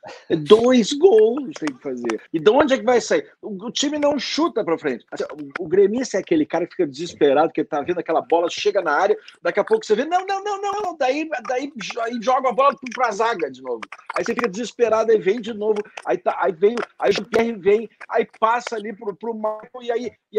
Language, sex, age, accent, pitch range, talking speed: Portuguese, male, 50-69, Brazilian, 170-275 Hz, 245 wpm